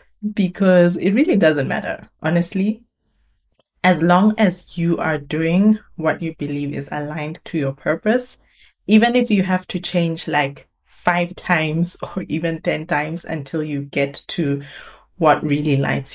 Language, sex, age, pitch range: English, female, 20-39, 150-180 Hz